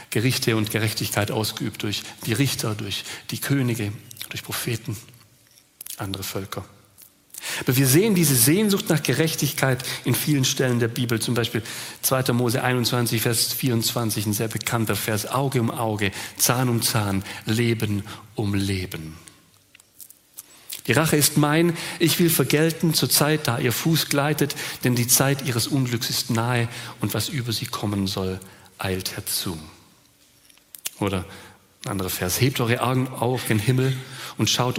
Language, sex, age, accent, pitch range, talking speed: German, male, 40-59, German, 110-135 Hz, 145 wpm